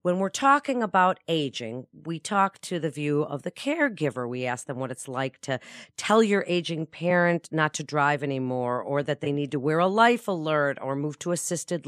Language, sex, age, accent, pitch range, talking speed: English, female, 40-59, American, 145-185 Hz, 205 wpm